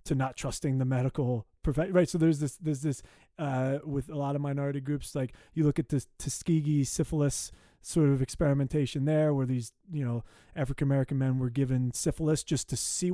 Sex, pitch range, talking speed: male, 130-160 Hz, 190 wpm